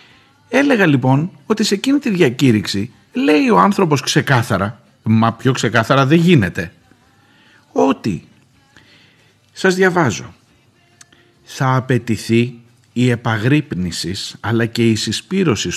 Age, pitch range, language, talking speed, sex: 50-69, 110-160 Hz, Greek, 105 wpm, male